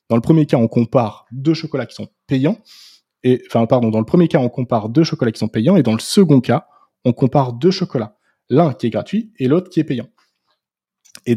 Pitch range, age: 120-160 Hz, 20-39